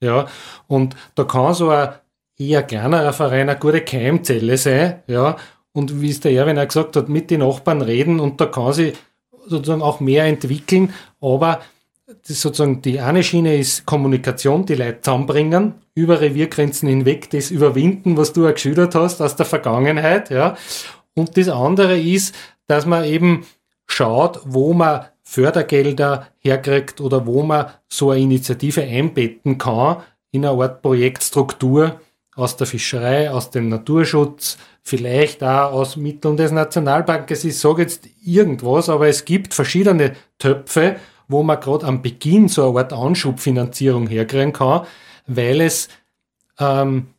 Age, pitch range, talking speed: 30-49, 130-160 Hz, 150 wpm